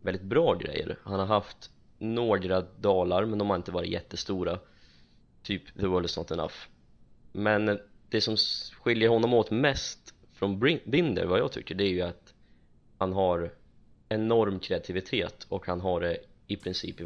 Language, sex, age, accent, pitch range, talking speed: Swedish, male, 20-39, native, 90-105 Hz, 160 wpm